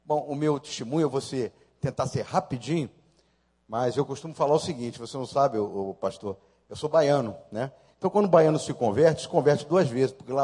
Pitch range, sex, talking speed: 115-165 Hz, male, 215 wpm